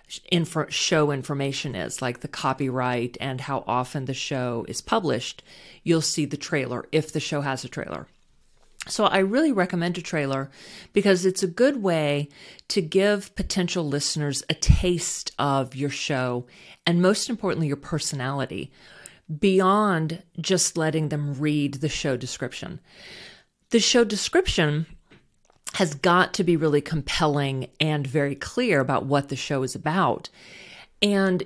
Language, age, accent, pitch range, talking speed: English, 40-59, American, 140-190 Hz, 145 wpm